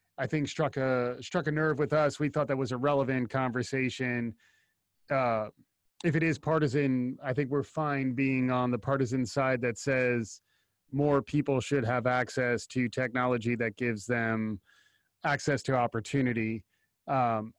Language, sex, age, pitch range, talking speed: English, male, 30-49, 120-145 Hz, 155 wpm